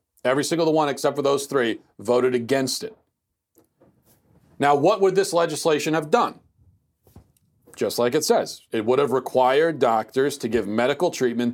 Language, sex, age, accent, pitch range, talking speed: English, male, 40-59, American, 115-145 Hz, 155 wpm